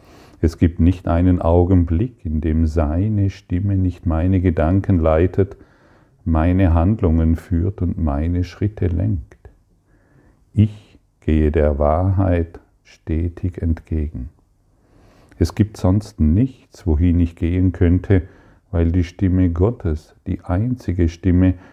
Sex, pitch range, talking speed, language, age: male, 80-95 Hz, 115 wpm, German, 50-69